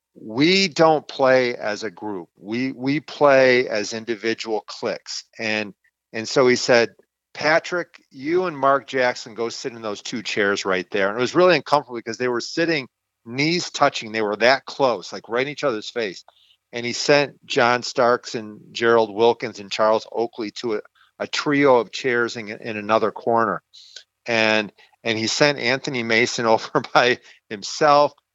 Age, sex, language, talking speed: 40-59, male, English, 170 wpm